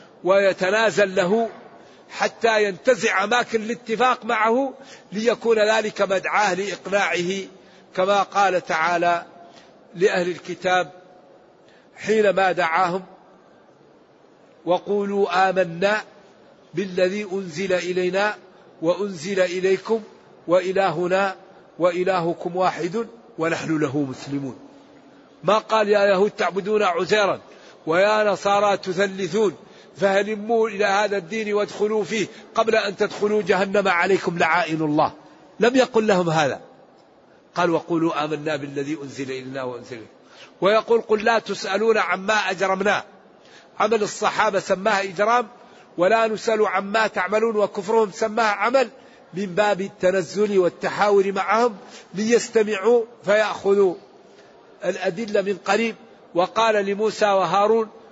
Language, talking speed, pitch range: Arabic, 95 wpm, 185-220 Hz